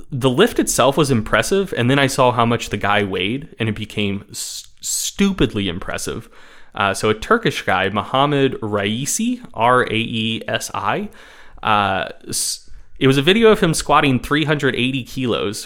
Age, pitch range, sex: 20-39, 105-135 Hz, male